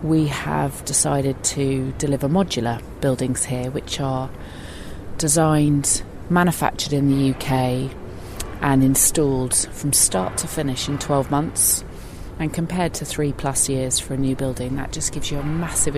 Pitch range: 135-155 Hz